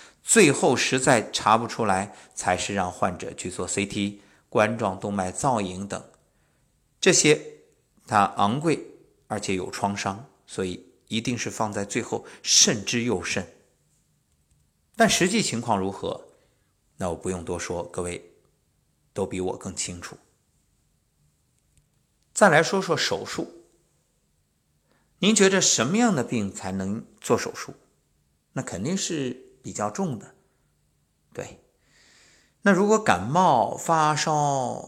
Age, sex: 50-69, male